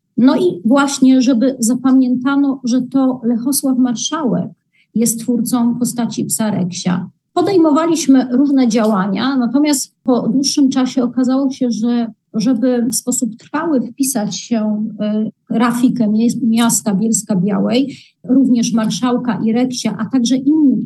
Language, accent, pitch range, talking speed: Polish, native, 215-255 Hz, 120 wpm